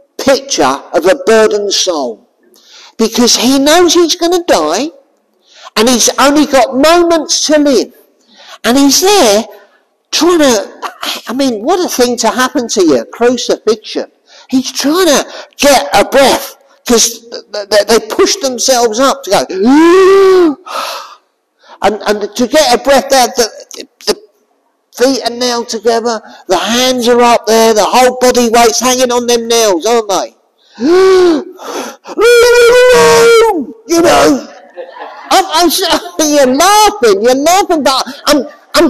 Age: 50-69